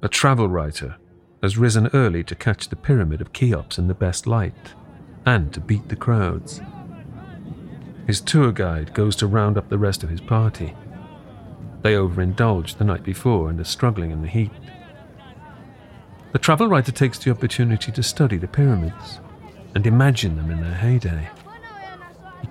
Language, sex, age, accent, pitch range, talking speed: English, male, 40-59, British, 90-120 Hz, 165 wpm